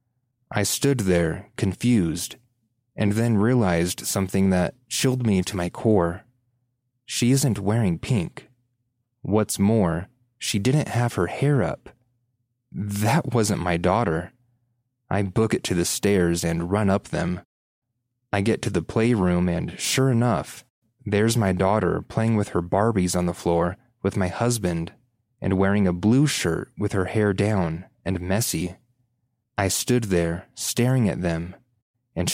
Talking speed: 145 wpm